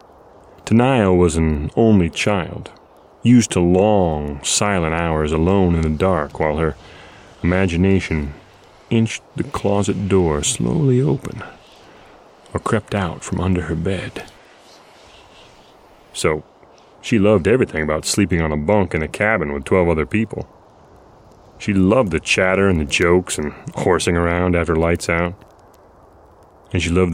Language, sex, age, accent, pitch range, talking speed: English, male, 30-49, American, 80-100 Hz, 135 wpm